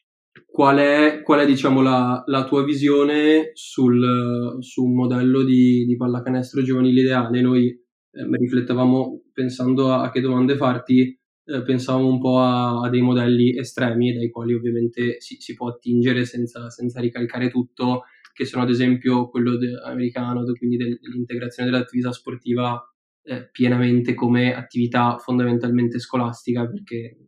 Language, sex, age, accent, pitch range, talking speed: Italian, male, 20-39, native, 120-130 Hz, 135 wpm